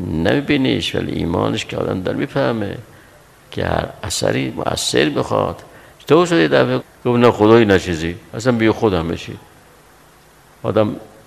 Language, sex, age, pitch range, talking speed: Persian, male, 60-79, 85-115 Hz, 115 wpm